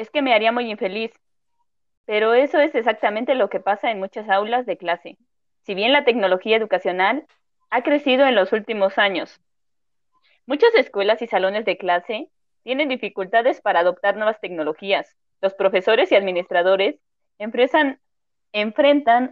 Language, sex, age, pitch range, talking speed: Spanish, female, 20-39, 195-265 Hz, 145 wpm